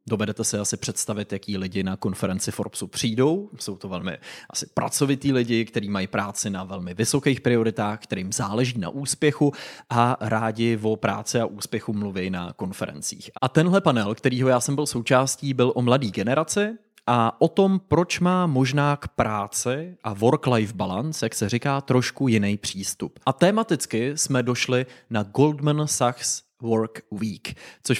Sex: male